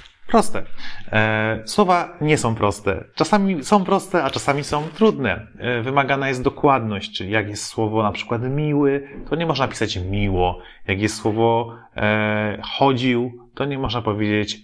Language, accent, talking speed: Polish, native, 155 wpm